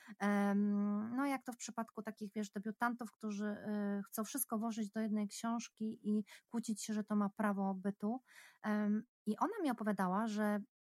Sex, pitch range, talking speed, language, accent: female, 205-240 Hz, 155 wpm, Polish, native